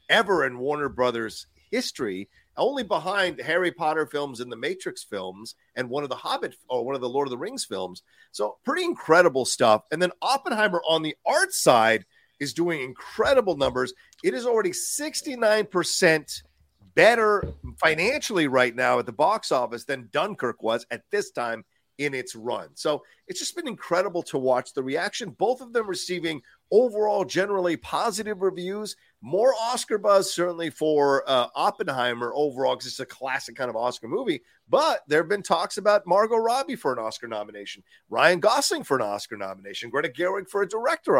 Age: 40-59